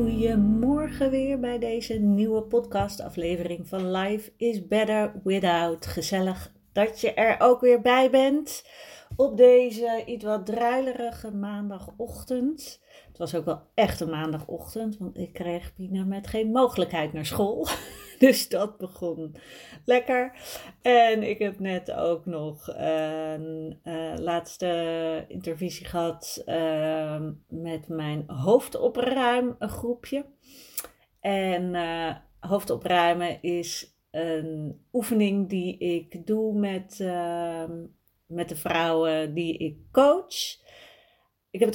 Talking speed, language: 120 wpm, Dutch